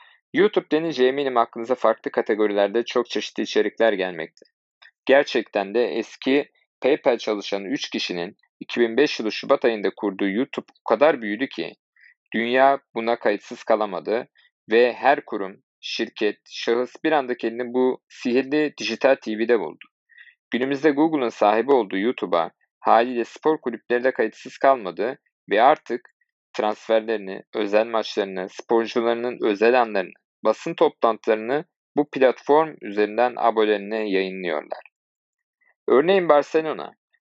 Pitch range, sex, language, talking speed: 110-150 Hz, male, Turkish, 115 wpm